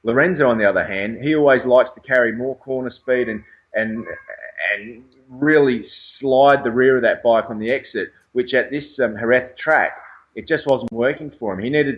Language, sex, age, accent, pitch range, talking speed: English, male, 30-49, Australian, 105-125 Hz, 200 wpm